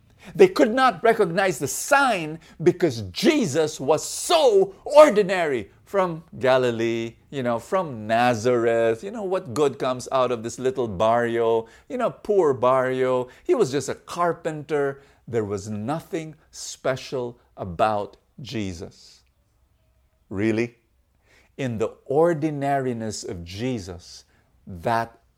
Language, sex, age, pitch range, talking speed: English, male, 50-69, 110-160 Hz, 115 wpm